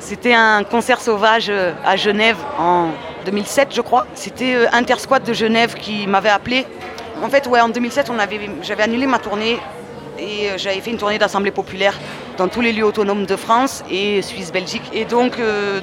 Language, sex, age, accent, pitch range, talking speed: French, female, 30-49, French, 200-235 Hz, 180 wpm